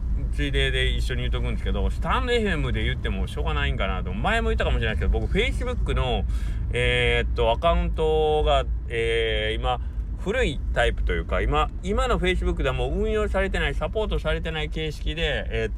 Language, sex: Japanese, male